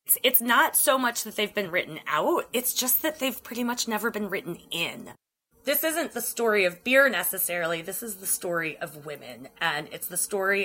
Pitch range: 170-230 Hz